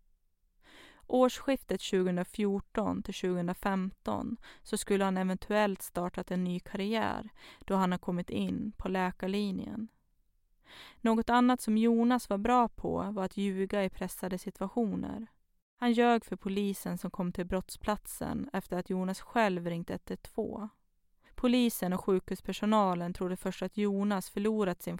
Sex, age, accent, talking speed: female, 20-39, native, 125 wpm